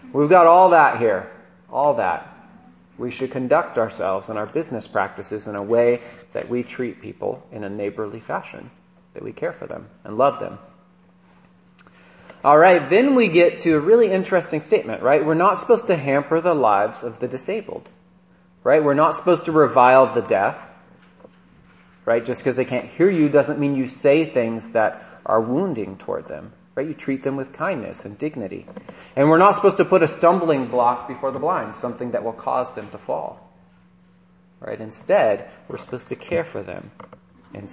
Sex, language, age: male, English, 30-49